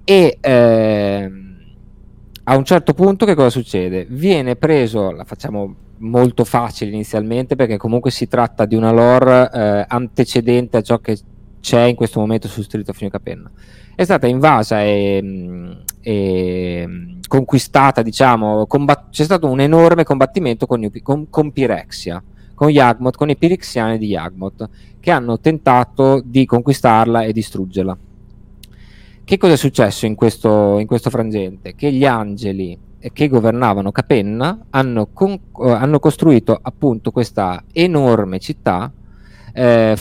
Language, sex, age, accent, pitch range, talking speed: Italian, male, 20-39, native, 100-130 Hz, 135 wpm